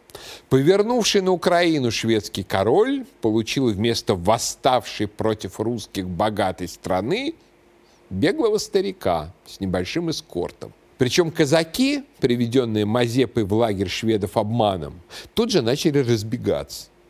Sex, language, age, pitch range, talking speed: male, Russian, 50-69, 105-160 Hz, 100 wpm